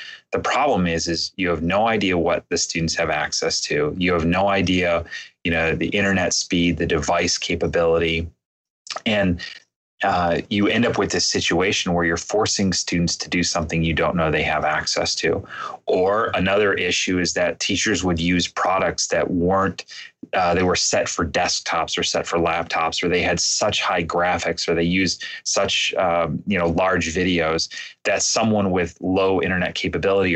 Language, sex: English, male